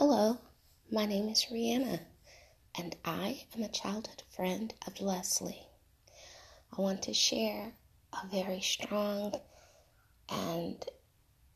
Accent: American